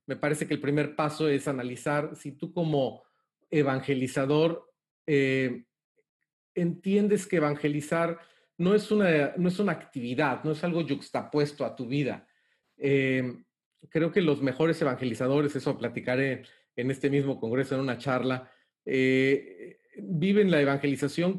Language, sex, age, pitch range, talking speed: English, male, 40-59, 135-165 Hz, 130 wpm